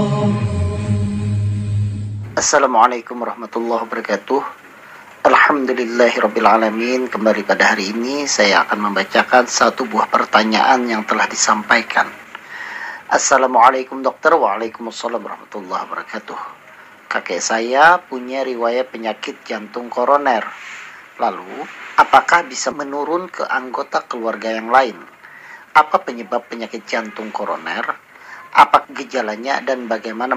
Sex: male